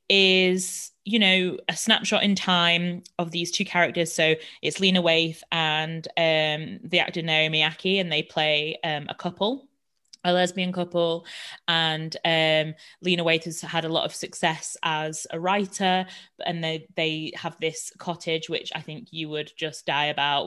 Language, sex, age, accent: English, female, 20-39, British